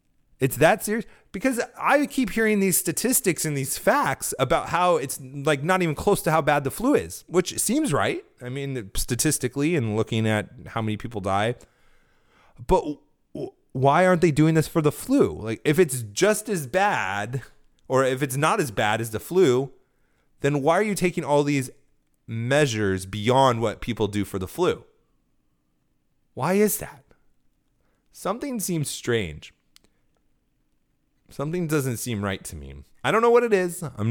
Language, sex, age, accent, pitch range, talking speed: English, male, 30-49, American, 100-155 Hz, 170 wpm